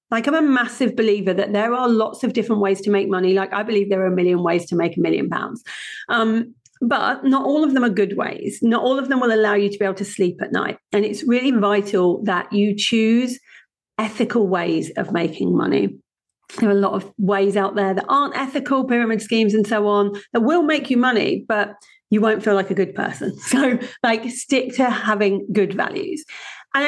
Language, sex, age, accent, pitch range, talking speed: English, female, 40-59, British, 205-265 Hz, 225 wpm